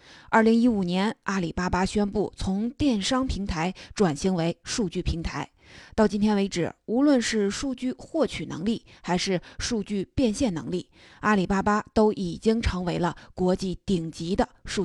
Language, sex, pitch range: Chinese, female, 185-240 Hz